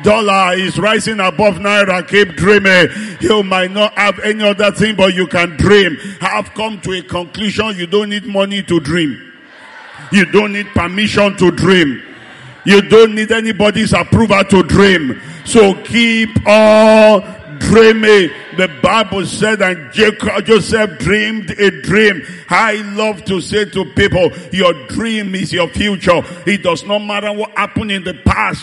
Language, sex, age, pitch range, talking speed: English, male, 50-69, 170-205 Hz, 155 wpm